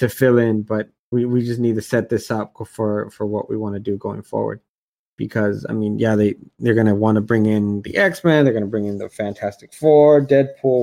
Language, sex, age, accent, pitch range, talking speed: English, male, 20-39, American, 105-125 Hz, 245 wpm